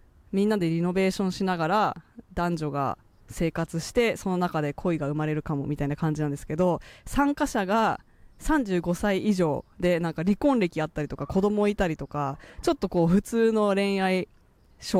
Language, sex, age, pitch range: Japanese, female, 20-39, 155-230 Hz